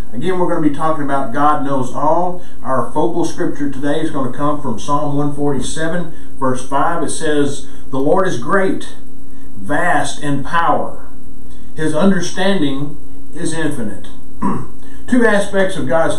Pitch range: 140-190 Hz